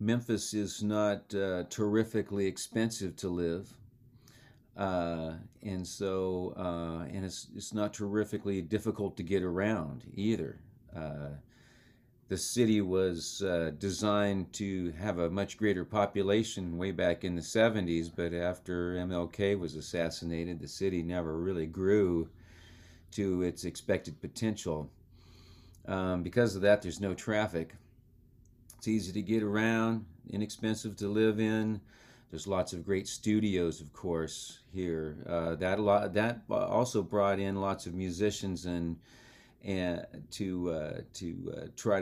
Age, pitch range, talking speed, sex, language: 40-59, 85-105 Hz, 135 wpm, male, English